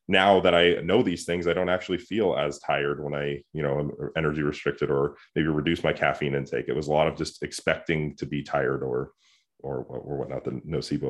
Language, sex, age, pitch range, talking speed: English, male, 30-49, 80-95 Hz, 225 wpm